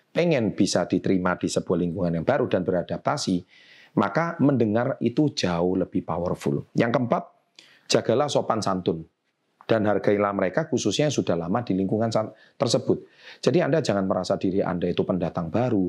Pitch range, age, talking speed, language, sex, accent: 95-130 Hz, 30-49, 150 wpm, Indonesian, male, native